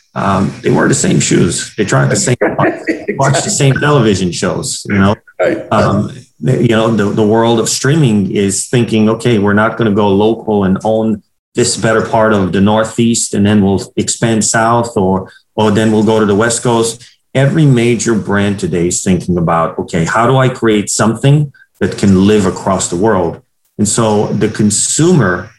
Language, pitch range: English, 100-120 Hz